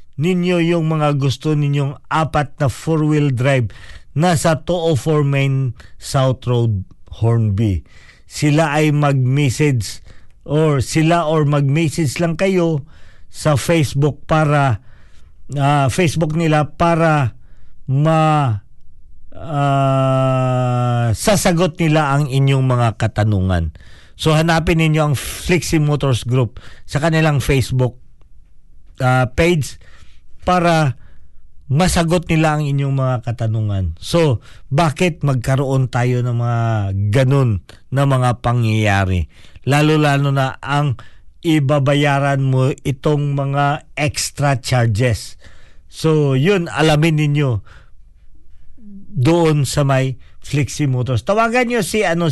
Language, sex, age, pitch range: Filipino, male, 50-69, 115-155 Hz